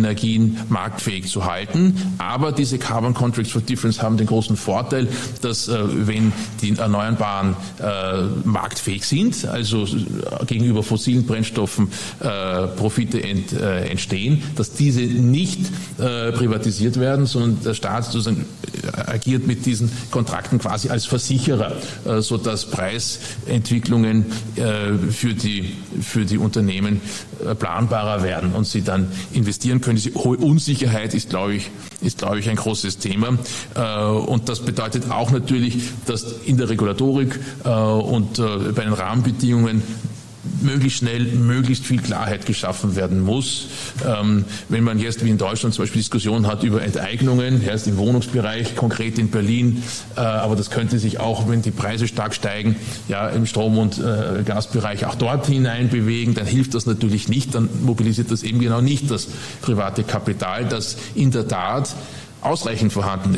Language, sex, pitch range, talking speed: German, male, 105-125 Hz, 140 wpm